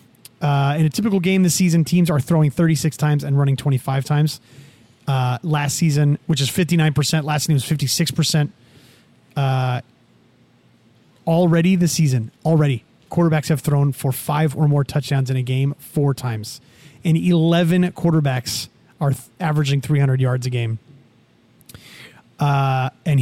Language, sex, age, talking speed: English, male, 30-49, 140 wpm